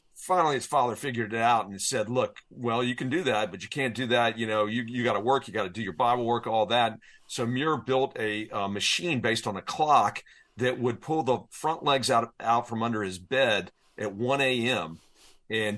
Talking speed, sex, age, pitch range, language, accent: 230 wpm, male, 50-69, 105-130 Hz, English, American